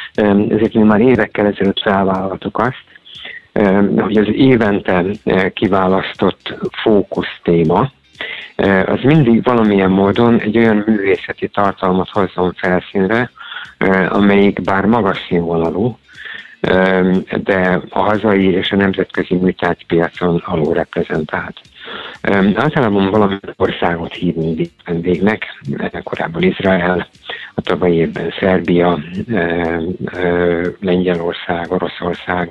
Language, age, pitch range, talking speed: Hungarian, 50-69, 90-105 Hz, 100 wpm